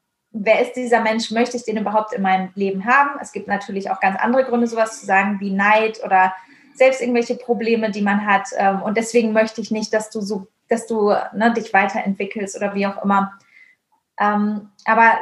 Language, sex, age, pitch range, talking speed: German, female, 20-39, 200-240 Hz, 190 wpm